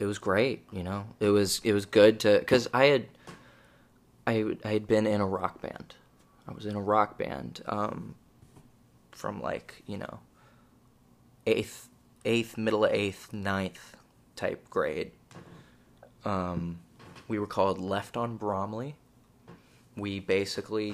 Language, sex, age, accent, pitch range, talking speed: English, male, 20-39, American, 95-110 Hz, 145 wpm